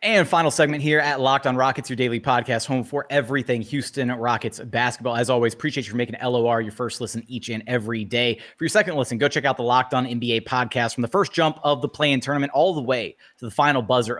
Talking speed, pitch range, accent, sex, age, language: 245 wpm, 120-150 Hz, American, male, 20-39, English